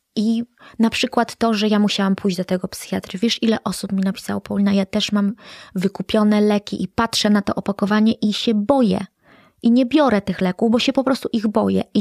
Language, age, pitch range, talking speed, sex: Polish, 20-39, 195-235 Hz, 210 wpm, female